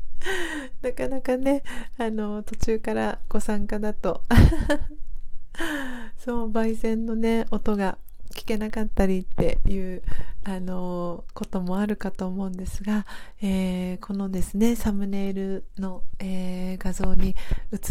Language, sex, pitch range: Japanese, female, 185-225 Hz